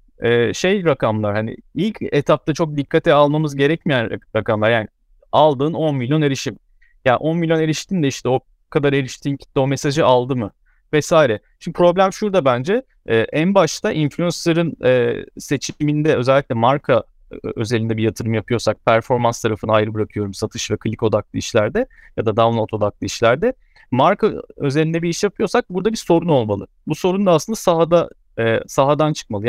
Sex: male